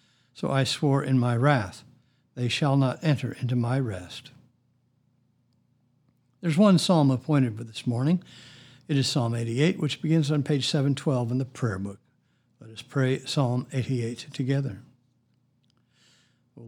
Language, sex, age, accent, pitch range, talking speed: English, male, 60-79, American, 125-145 Hz, 145 wpm